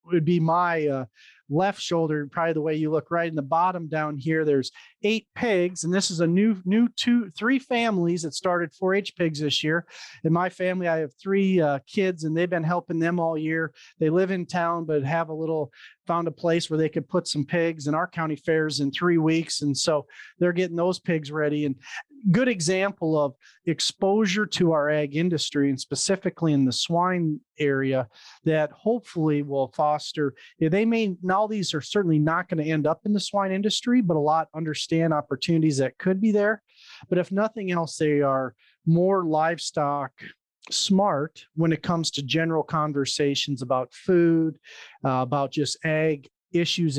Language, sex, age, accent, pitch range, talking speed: English, male, 40-59, American, 145-180 Hz, 185 wpm